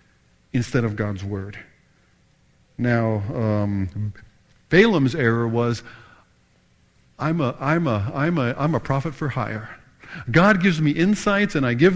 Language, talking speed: English, 135 wpm